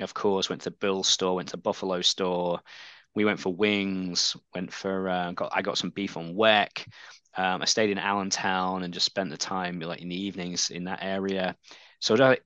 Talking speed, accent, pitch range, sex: 200 wpm, British, 90-105 Hz, male